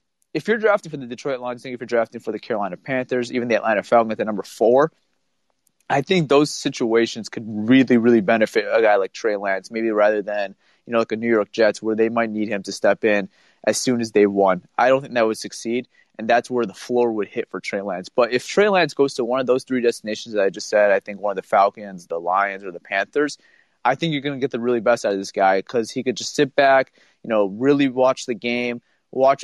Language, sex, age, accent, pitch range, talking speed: English, male, 20-39, American, 110-130 Hz, 260 wpm